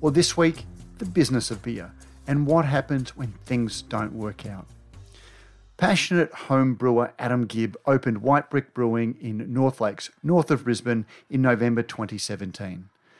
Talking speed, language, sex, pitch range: 150 wpm, English, male, 110-145 Hz